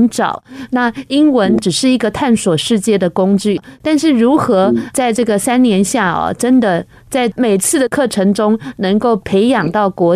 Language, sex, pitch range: Chinese, female, 200-270 Hz